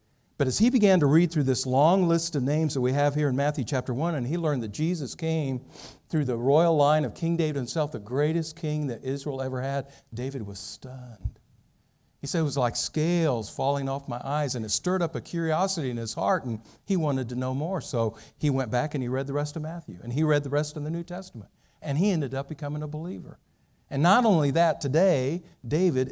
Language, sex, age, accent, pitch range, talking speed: English, male, 50-69, American, 125-160 Hz, 235 wpm